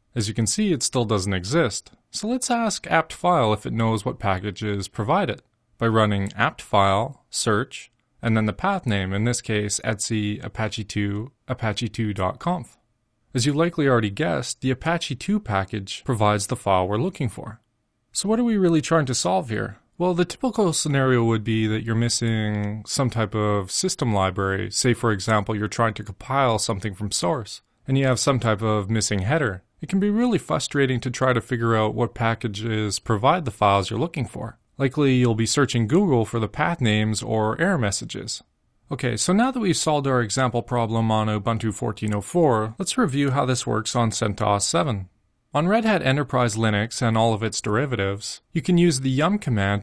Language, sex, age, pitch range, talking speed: English, male, 30-49, 110-140 Hz, 185 wpm